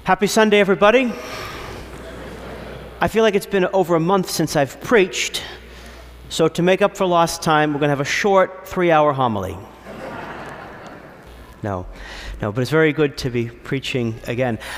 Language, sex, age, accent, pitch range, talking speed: English, male, 40-59, American, 140-185 Hz, 160 wpm